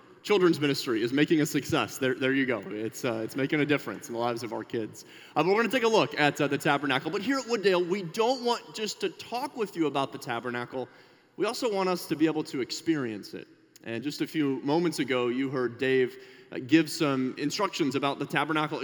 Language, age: English, 30-49